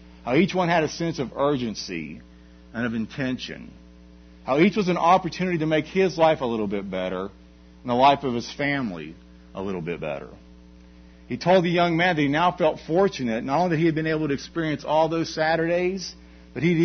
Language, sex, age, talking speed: English, male, 50-69, 210 wpm